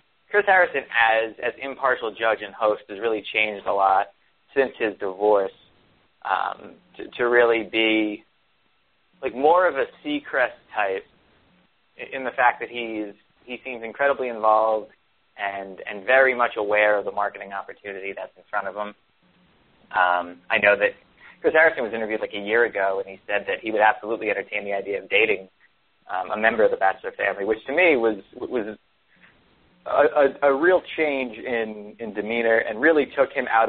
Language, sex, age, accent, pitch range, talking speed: English, male, 20-39, American, 105-130 Hz, 180 wpm